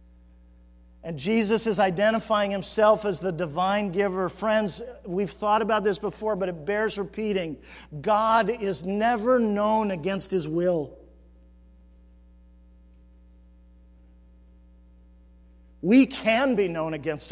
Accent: American